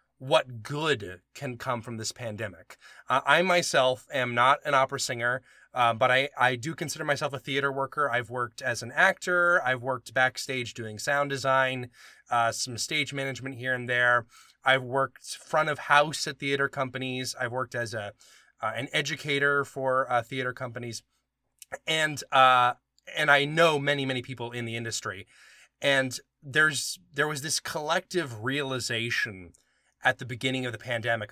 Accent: American